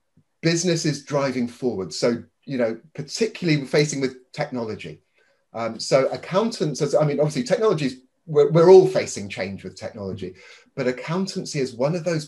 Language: English